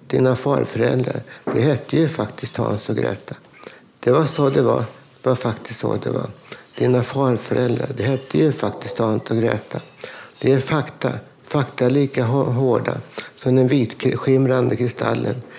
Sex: male